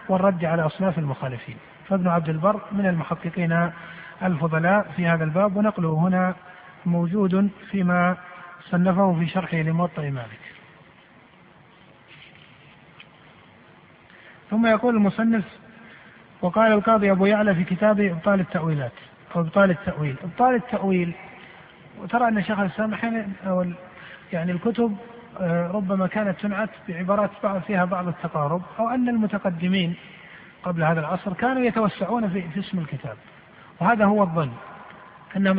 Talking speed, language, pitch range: 115 wpm, Arabic, 175-215 Hz